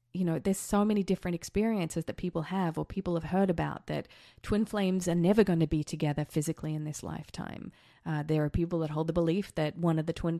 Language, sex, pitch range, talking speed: English, female, 160-190 Hz, 235 wpm